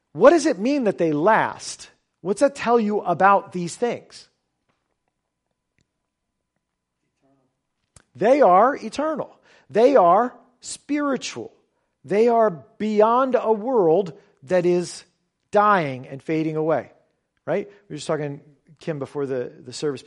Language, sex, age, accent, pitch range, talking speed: English, male, 40-59, American, 150-230 Hz, 125 wpm